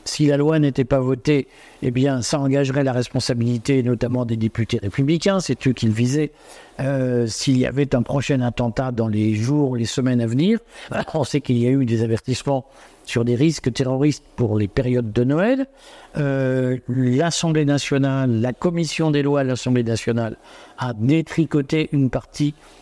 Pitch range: 125-150 Hz